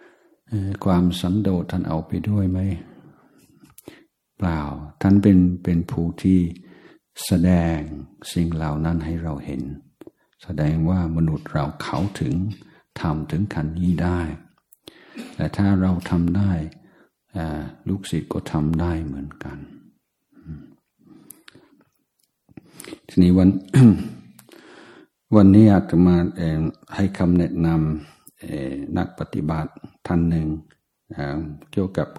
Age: 60-79